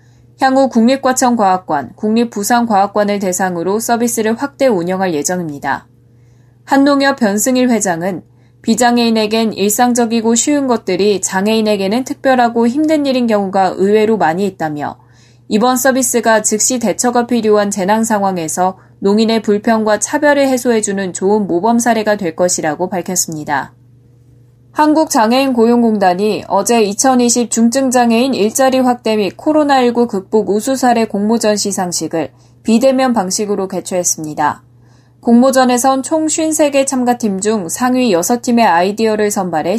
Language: Korean